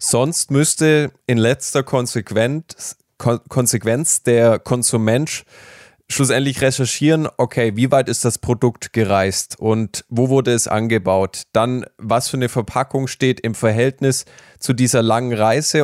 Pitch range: 110-130 Hz